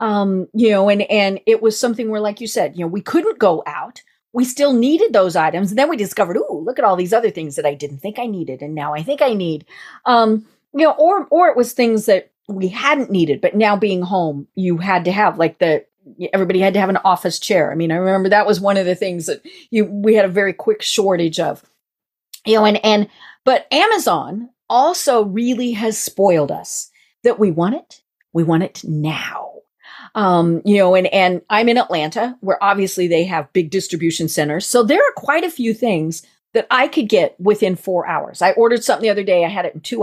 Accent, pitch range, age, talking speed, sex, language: American, 180-245 Hz, 40-59, 230 wpm, female, English